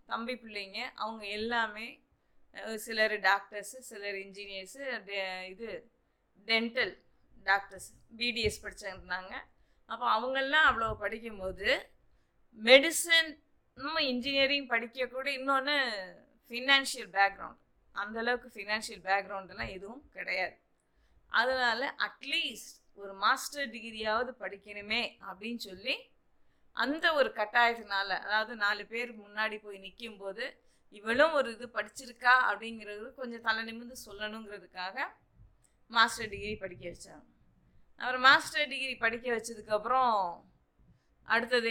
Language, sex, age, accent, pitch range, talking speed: Tamil, female, 20-39, native, 200-255 Hz, 90 wpm